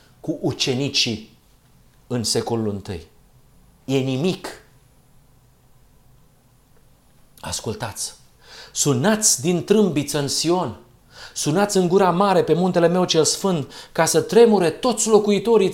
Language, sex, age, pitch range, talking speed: Romanian, male, 50-69, 130-185 Hz, 105 wpm